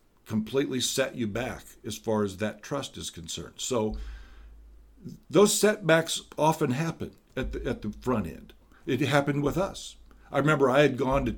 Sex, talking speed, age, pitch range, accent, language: male, 165 wpm, 50-69, 110-150 Hz, American, English